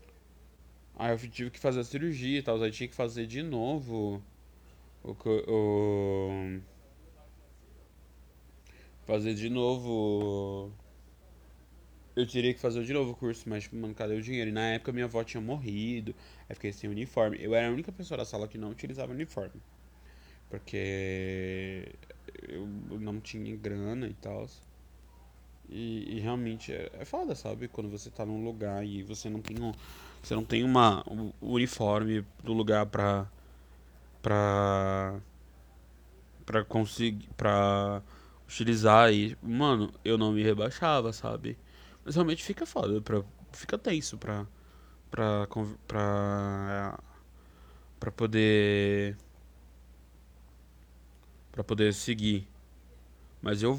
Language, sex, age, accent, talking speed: Portuguese, male, 20-39, Brazilian, 135 wpm